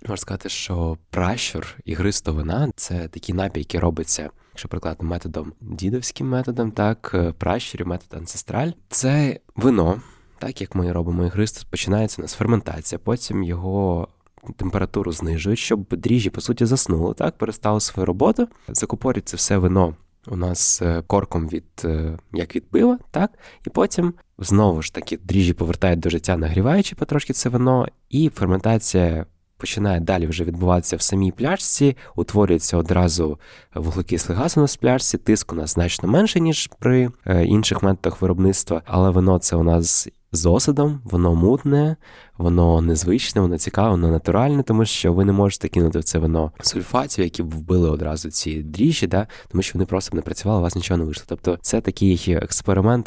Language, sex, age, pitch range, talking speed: Ukrainian, male, 20-39, 85-110 Hz, 165 wpm